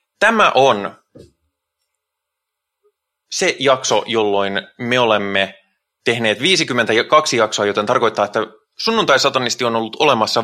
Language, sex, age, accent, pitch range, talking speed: Finnish, male, 20-39, native, 105-150 Hz, 100 wpm